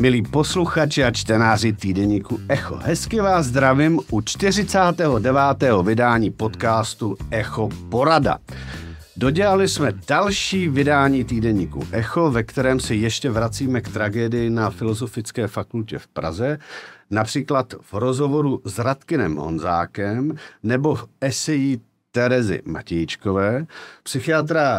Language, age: Czech, 50-69